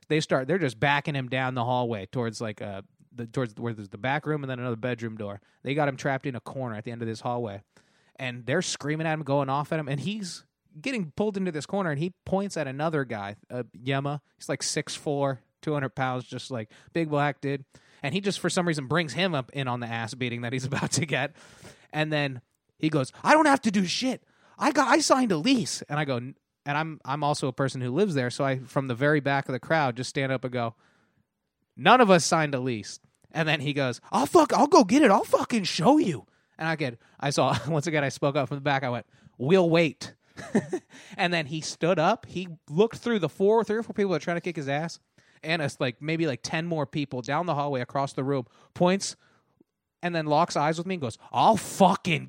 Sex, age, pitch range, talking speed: male, 20-39, 130-175 Hz, 245 wpm